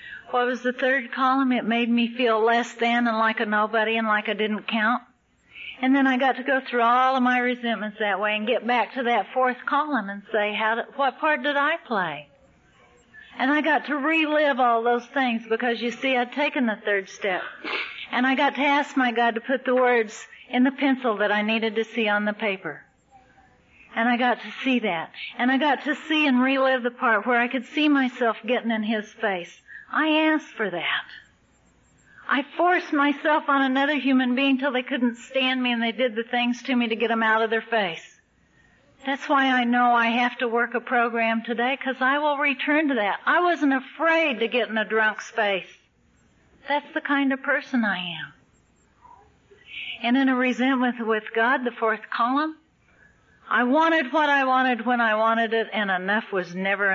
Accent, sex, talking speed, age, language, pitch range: American, female, 205 wpm, 50-69, English, 225-270 Hz